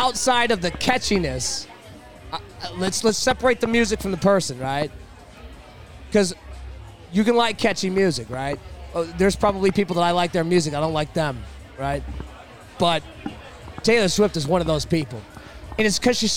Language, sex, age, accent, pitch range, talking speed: English, male, 30-49, American, 180-240 Hz, 170 wpm